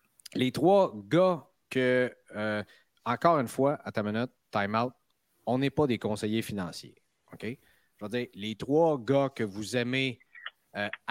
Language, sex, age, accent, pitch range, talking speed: French, male, 30-49, Canadian, 105-135 Hz, 155 wpm